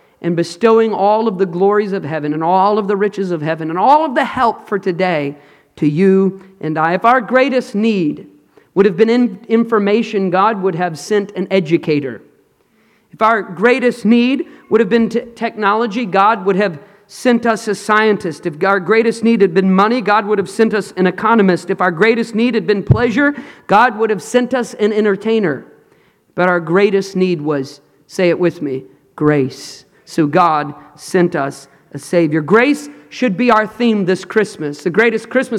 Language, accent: English, American